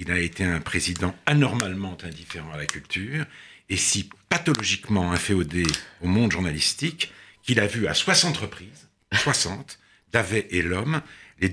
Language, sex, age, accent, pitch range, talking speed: French, male, 70-89, French, 95-125 Hz, 145 wpm